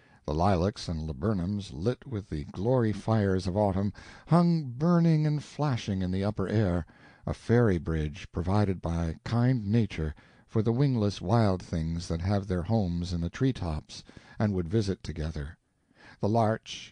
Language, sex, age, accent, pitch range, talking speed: English, male, 60-79, American, 90-125 Hz, 155 wpm